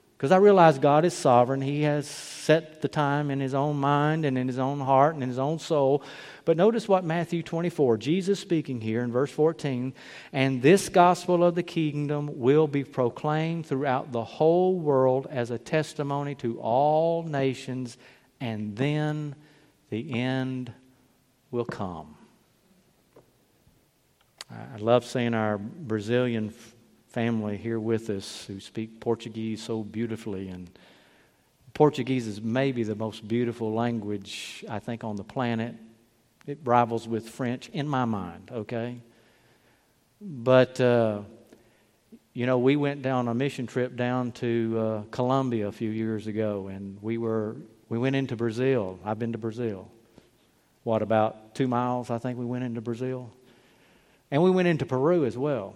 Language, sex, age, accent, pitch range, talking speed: English, male, 50-69, American, 115-145 Hz, 155 wpm